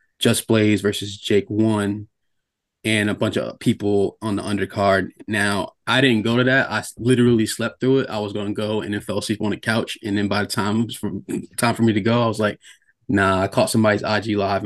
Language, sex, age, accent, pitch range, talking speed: English, male, 20-39, American, 100-115 Hz, 230 wpm